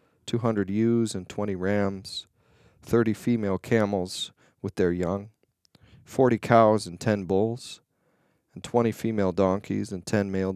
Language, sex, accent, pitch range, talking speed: English, male, American, 100-120 Hz, 130 wpm